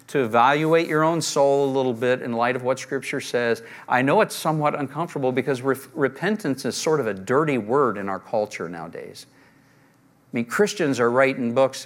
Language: English